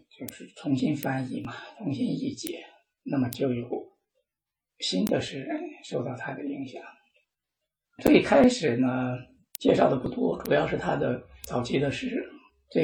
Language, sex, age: Chinese, male, 60-79